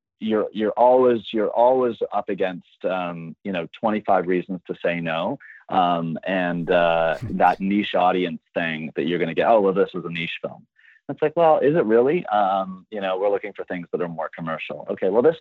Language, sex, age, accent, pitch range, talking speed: English, male, 30-49, American, 90-100 Hz, 215 wpm